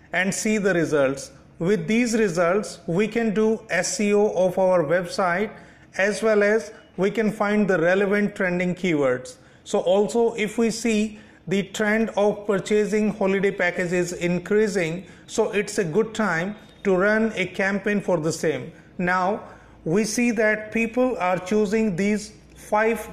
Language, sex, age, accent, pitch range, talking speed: English, male, 30-49, Indian, 180-210 Hz, 150 wpm